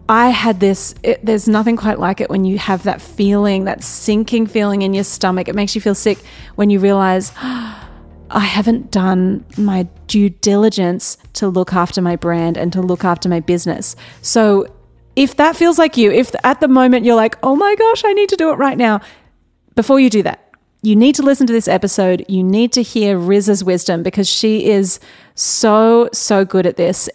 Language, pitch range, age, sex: English, 190-235 Hz, 30-49, female